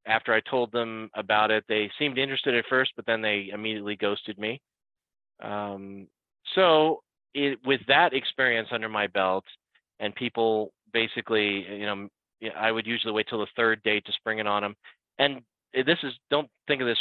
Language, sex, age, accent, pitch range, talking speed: English, male, 30-49, American, 105-130 Hz, 180 wpm